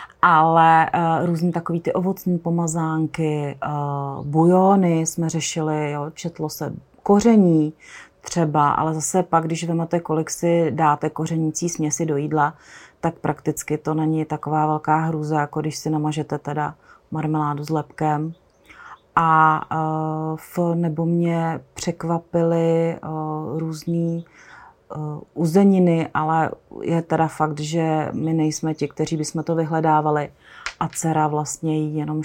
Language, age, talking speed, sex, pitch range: Czech, 30-49, 120 wpm, female, 155-170 Hz